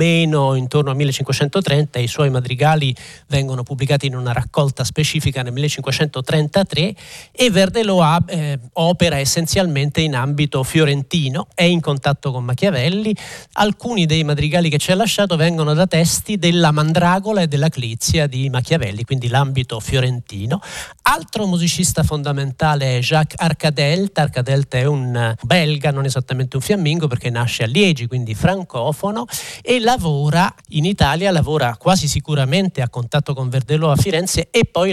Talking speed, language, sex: 145 wpm, Italian, male